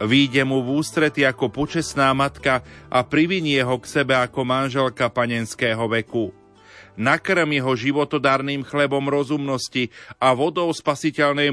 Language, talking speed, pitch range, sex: Slovak, 125 wpm, 125-145 Hz, male